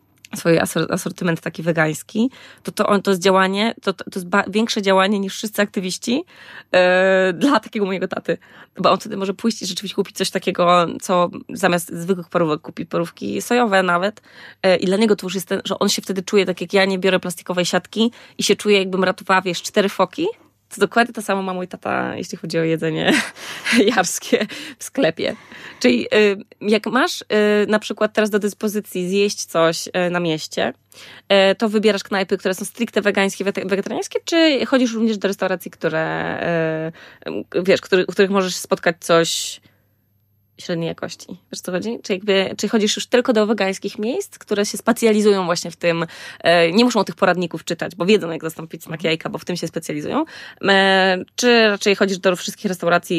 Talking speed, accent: 180 wpm, native